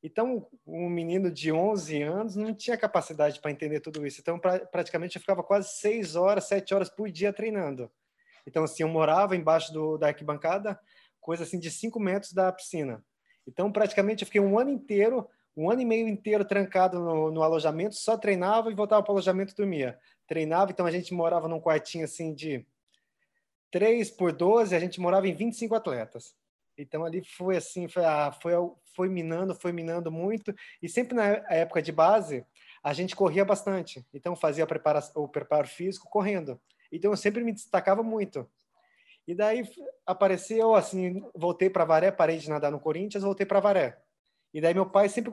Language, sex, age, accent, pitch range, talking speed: Portuguese, male, 20-39, Brazilian, 165-210 Hz, 190 wpm